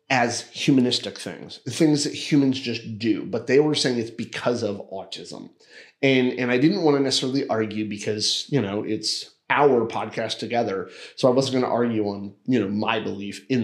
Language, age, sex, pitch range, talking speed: English, 30-49, male, 110-145 Hz, 185 wpm